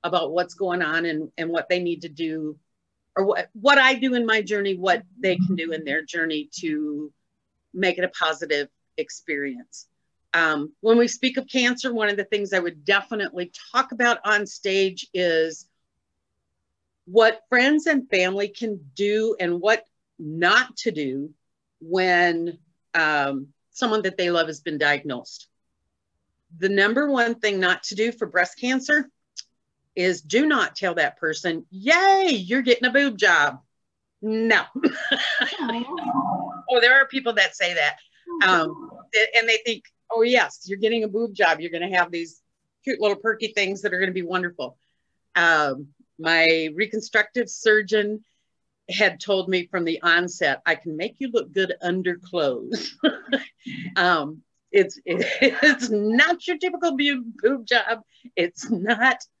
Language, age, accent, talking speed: English, 50-69, American, 160 wpm